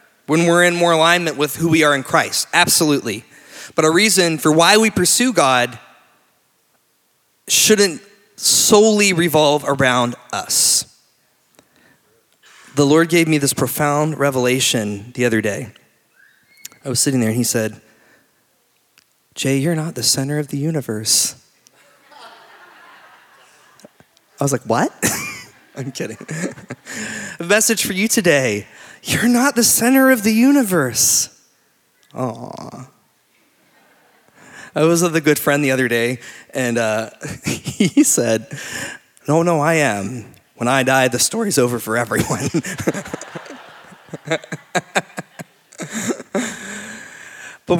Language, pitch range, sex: English, 130-180 Hz, male